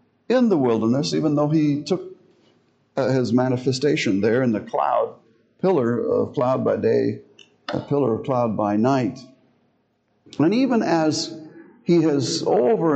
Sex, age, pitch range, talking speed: male, 60-79, 110-165 Hz, 140 wpm